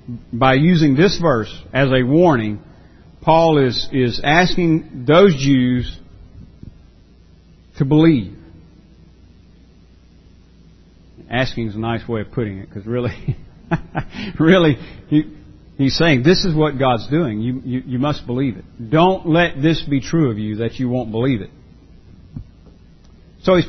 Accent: American